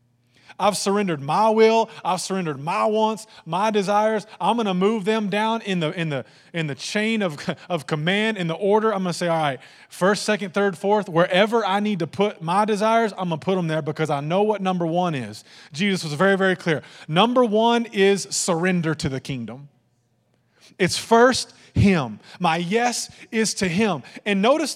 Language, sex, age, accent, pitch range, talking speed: English, male, 20-39, American, 120-190 Hz, 195 wpm